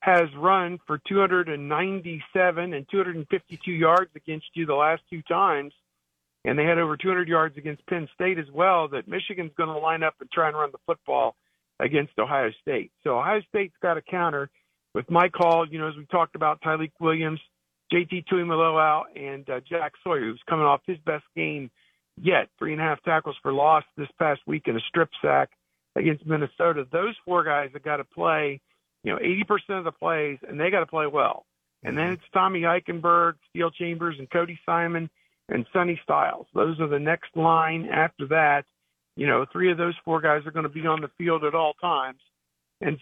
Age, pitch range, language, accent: 50-69, 150-175 Hz, English, American